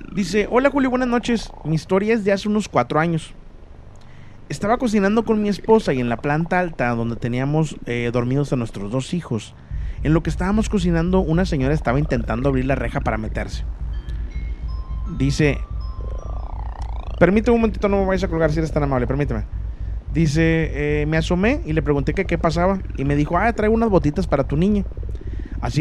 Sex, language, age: male, Spanish, 30-49